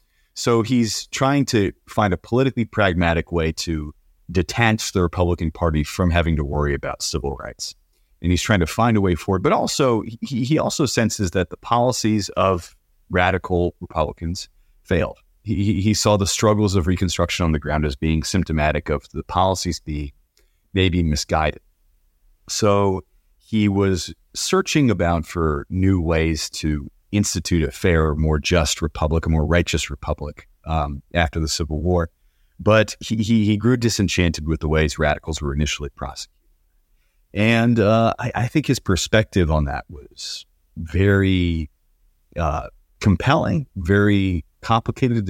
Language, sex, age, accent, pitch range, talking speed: English, male, 30-49, American, 80-105 Hz, 150 wpm